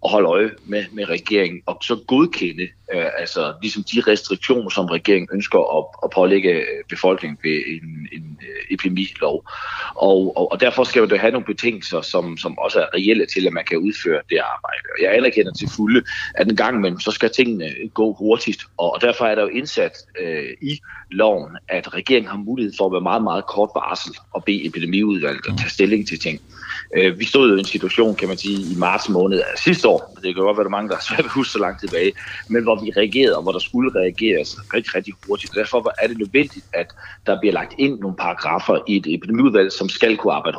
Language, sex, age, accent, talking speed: Danish, male, 40-59, native, 220 wpm